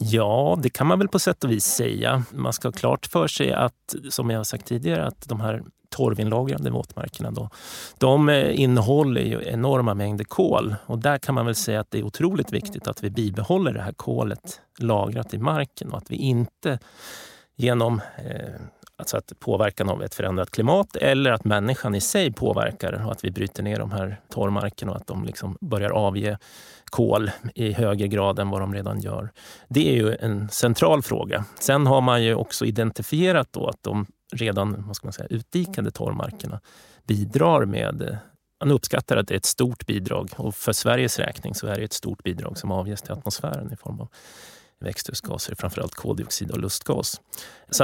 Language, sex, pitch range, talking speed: Swedish, male, 105-130 Hz, 180 wpm